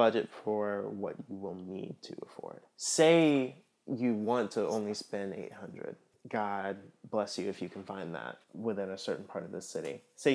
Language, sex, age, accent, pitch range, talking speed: English, male, 20-39, American, 100-130 Hz, 180 wpm